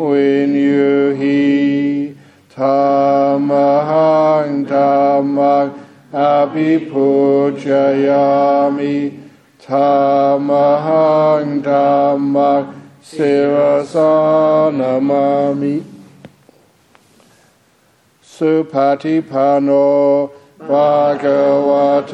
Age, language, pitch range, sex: 60-79, English, 140-145 Hz, male